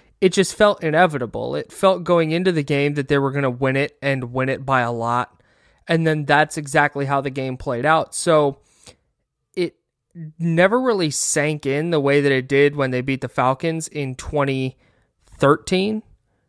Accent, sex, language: American, male, English